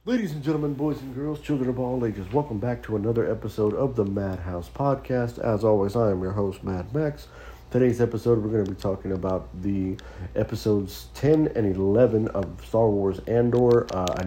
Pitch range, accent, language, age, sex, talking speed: 90-110 Hz, American, English, 50-69, male, 195 wpm